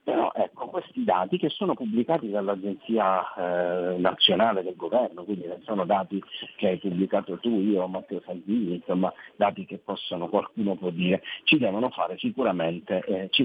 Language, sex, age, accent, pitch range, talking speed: Italian, male, 50-69, native, 95-125 Hz, 140 wpm